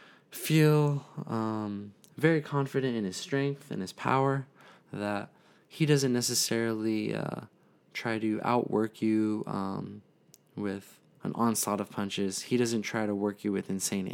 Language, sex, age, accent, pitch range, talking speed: English, male, 20-39, American, 105-135 Hz, 140 wpm